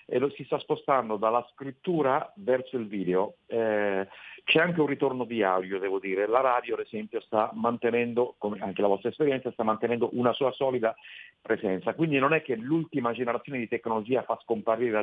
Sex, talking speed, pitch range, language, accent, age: male, 185 wpm, 100-130 Hz, Italian, native, 40-59